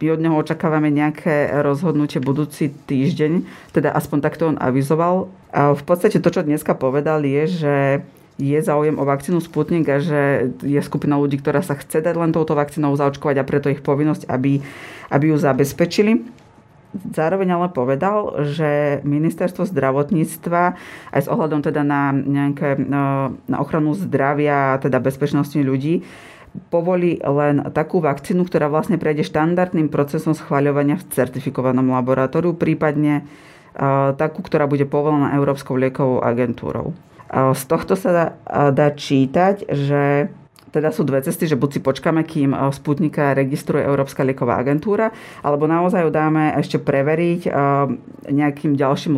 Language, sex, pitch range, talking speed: Slovak, female, 140-160 Hz, 150 wpm